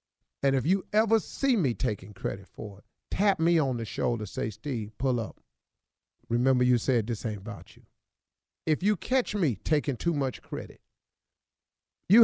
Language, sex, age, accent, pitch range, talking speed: English, male, 50-69, American, 105-155 Hz, 170 wpm